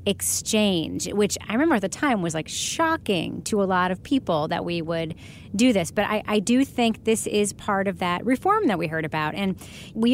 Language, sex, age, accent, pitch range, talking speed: English, female, 30-49, American, 185-245 Hz, 220 wpm